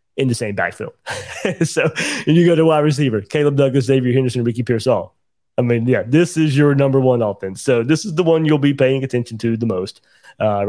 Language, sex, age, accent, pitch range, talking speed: English, male, 30-49, American, 110-135 Hz, 225 wpm